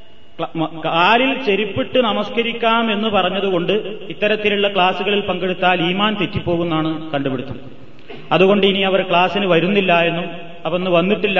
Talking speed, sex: 105 wpm, male